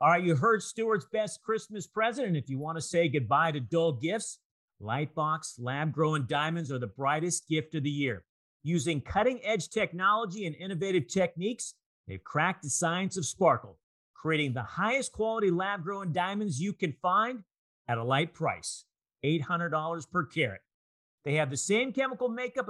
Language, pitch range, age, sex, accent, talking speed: English, 140-195 Hz, 50-69, male, American, 165 wpm